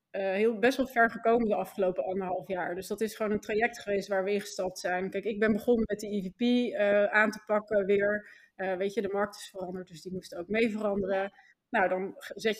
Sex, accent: female, Dutch